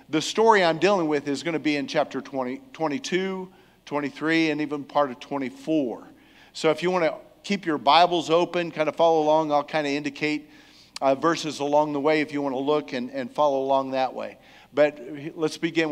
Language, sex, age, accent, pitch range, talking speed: English, male, 50-69, American, 150-210 Hz, 205 wpm